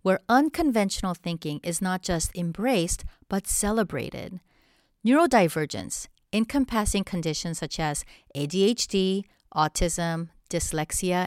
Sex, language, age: female, English, 40-59